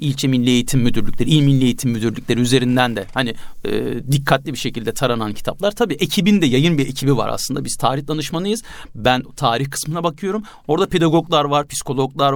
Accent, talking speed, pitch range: native, 170 wpm, 140-215 Hz